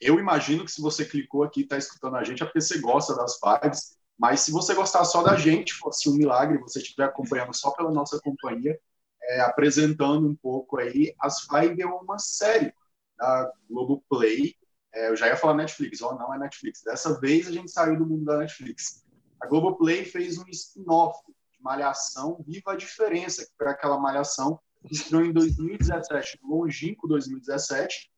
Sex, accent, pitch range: male, Brazilian, 140-170 Hz